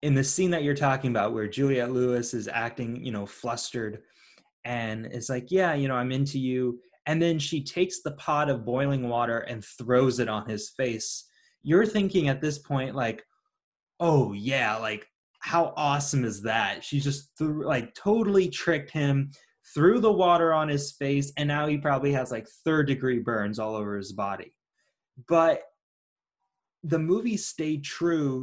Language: English